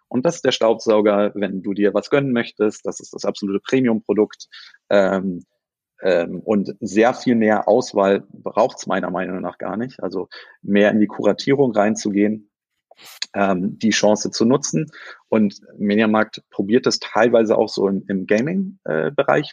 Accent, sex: German, male